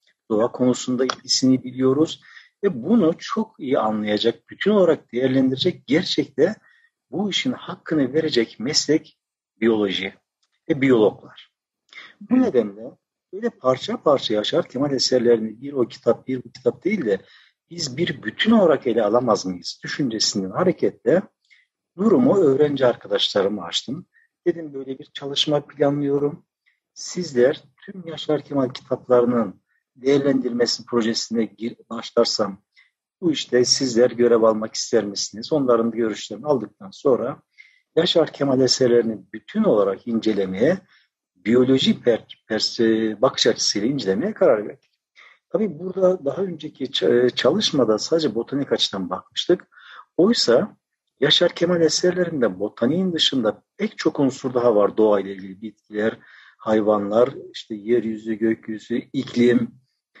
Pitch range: 115-160 Hz